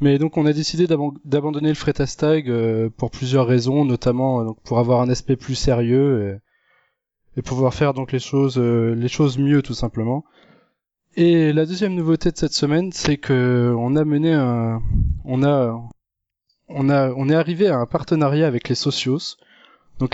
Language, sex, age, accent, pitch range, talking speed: French, male, 20-39, French, 120-145 Hz, 170 wpm